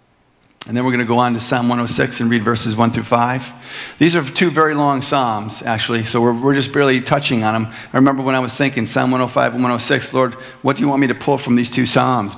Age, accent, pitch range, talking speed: 50-69, American, 125-175 Hz, 250 wpm